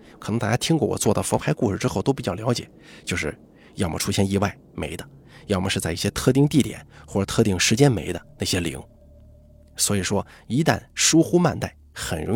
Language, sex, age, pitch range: Chinese, male, 20-39, 80-125 Hz